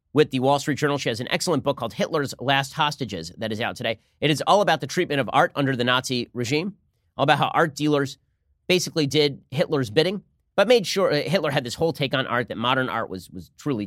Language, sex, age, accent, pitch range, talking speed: English, male, 30-49, American, 120-155 Hz, 240 wpm